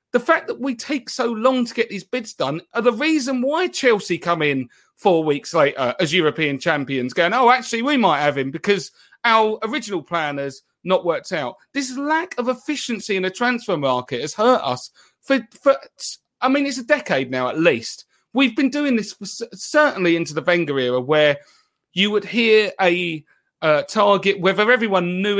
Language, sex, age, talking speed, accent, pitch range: English, male, 30-49, 190 wpm, British, 160-250 Hz